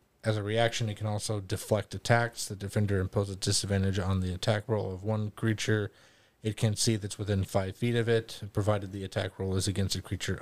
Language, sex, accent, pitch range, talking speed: English, male, American, 100-115 Hz, 215 wpm